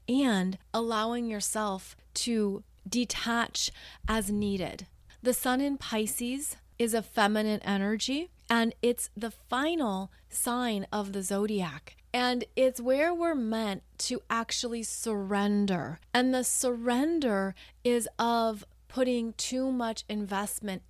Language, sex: English, female